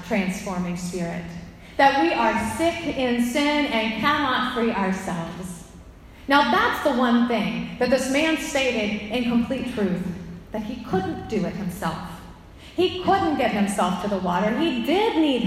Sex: female